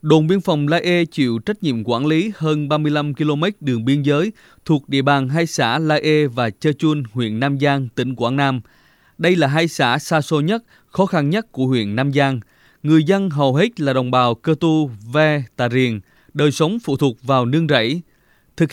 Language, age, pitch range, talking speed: Vietnamese, 20-39, 130-165 Hz, 210 wpm